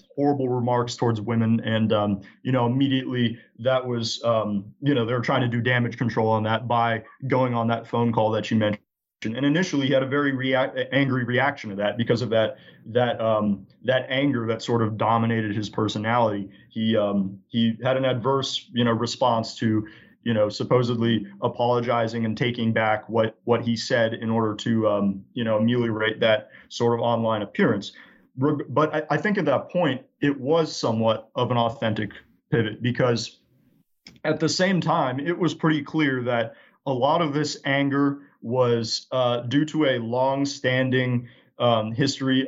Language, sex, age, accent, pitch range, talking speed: English, male, 30-49, American, 110-130 Hz, 175 wpm